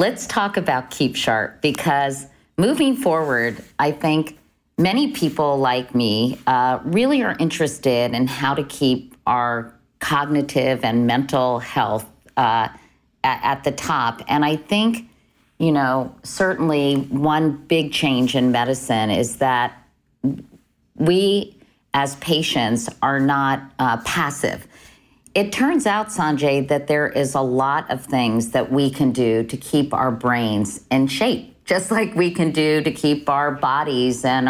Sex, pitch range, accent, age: female, 130-165 Hz, American, 50-69